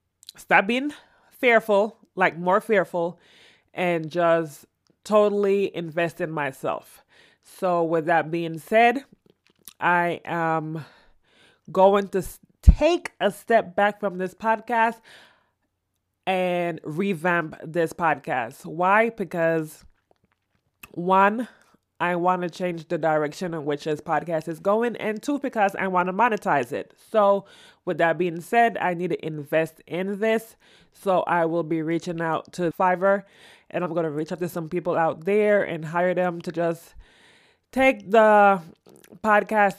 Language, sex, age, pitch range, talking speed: English, female, 20-39, 165-200 Hz, 140 wpm